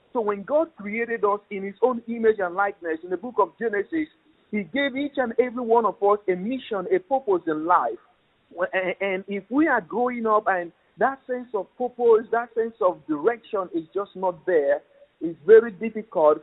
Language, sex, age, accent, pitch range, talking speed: English, male, 50-69, Nigerian, 160-215 Hz, 190 wpm